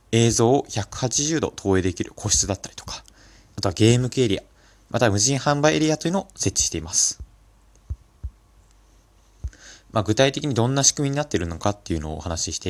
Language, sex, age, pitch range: Japanese, male, 20-39, 95-130 Hz